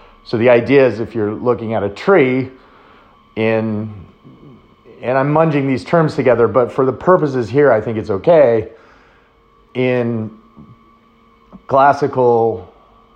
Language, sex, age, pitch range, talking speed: English, male, 40-59, 95-120 Hz, 130 wpm